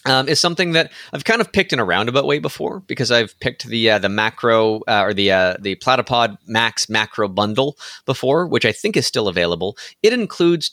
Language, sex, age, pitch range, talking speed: English, male, 30-49, 110-145 Hz, 215 wpm